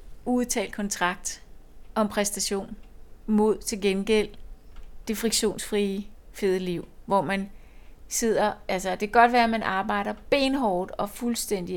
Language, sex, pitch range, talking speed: Danish, female, 185-220 Hz, 130 wpm